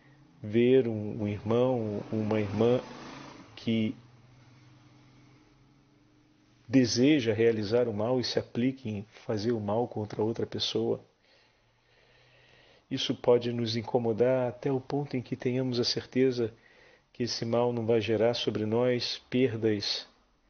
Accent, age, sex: Brazilian, 40-59, male